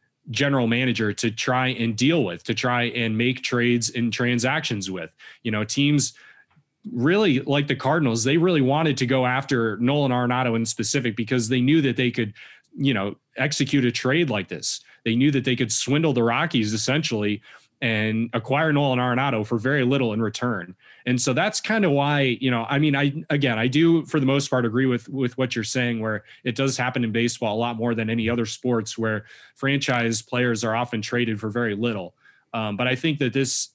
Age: 30-49